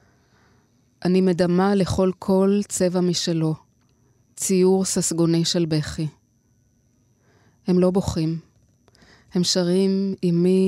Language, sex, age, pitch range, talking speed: Hebrew, female, 20-39, 155-185 Hz, 90 wpm